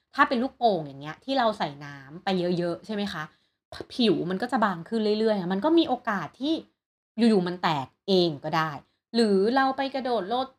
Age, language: 30-49, Thai